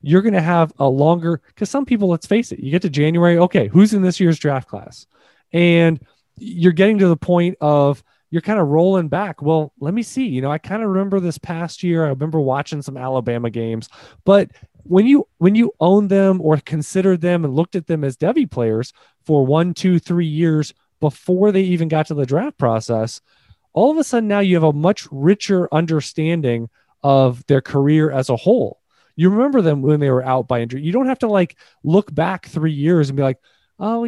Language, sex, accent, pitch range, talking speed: English, male, American, 145-190 Hz, 215 wpm